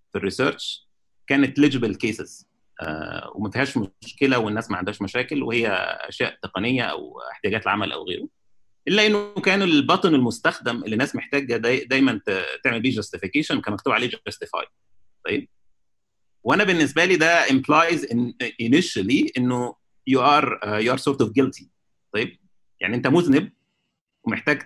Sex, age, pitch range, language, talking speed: male, 30-49, 115-165 Hz, Arabic, 145 wpm